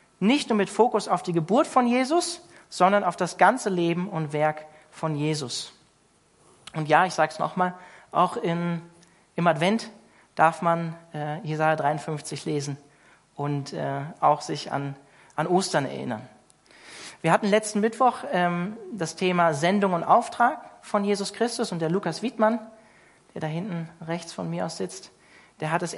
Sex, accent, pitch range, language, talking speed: male, German, 150-195 Hz, German, 160 wpm